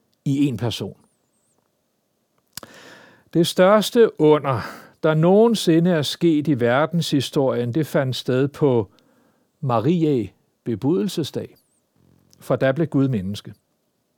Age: 60-79